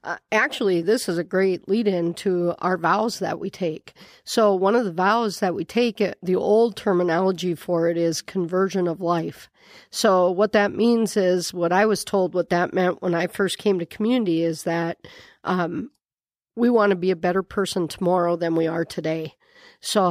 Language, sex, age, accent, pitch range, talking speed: English, female, 50-69, American, 170-200 Hz, 190 wpm